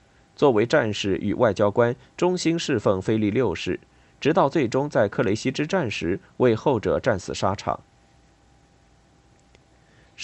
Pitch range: 100-130 Hz